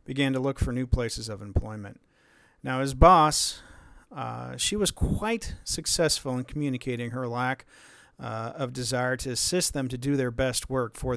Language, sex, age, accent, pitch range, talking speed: English, male, 40-59, American, 120-155 Hz, 170 wpm